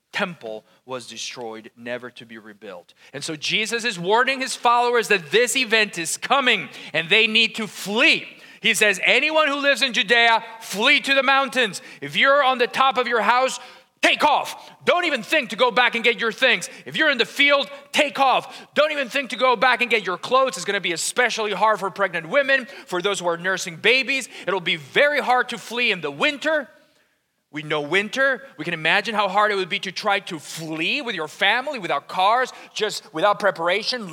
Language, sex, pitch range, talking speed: English, male, 170-250 Hz, 210 wpm